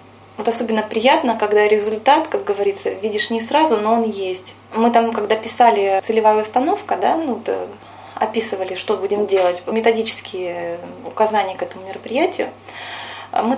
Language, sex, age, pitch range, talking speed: Russian, female, 20-39, 205-255 Hz, 140 wpm